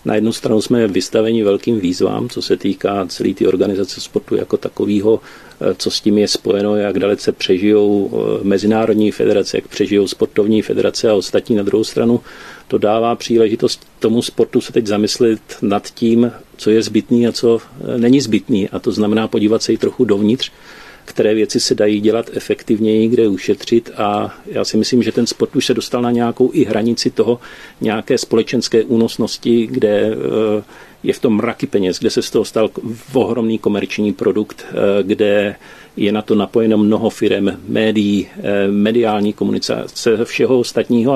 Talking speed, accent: 165 wpm, native